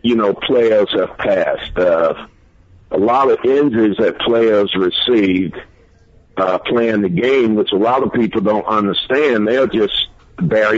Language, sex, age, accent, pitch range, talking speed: English, male, 60-79, American, 110-145 Hz, 150 wpm